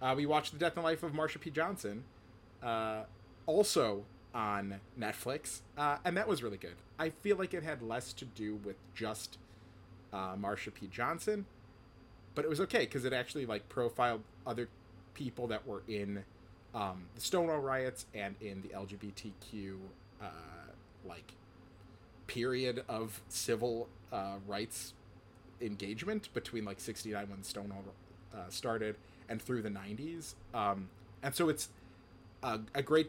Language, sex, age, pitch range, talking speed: English, male, 30-49, 95-120 Hz, 150 wpm